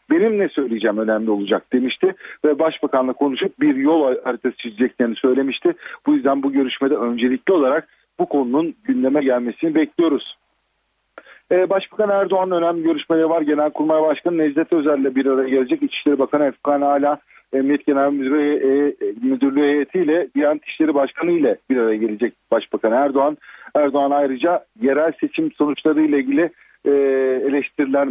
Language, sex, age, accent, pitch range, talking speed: Turkish, male, 40-59, native, 135-185 Hz, 140 wpm